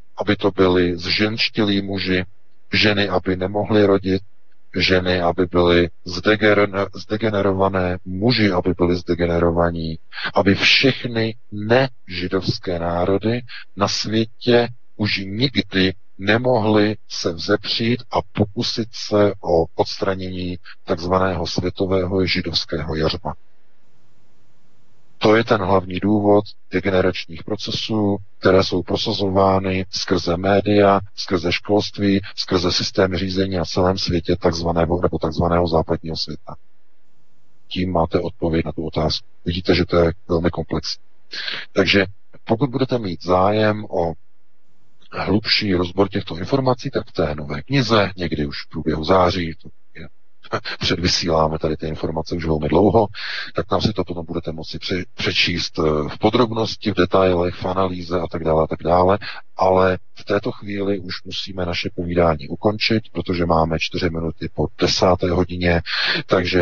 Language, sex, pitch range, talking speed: Czech, male, 85-105 Hz, 125 wpm